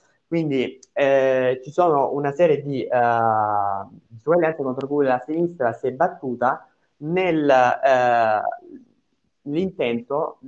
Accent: native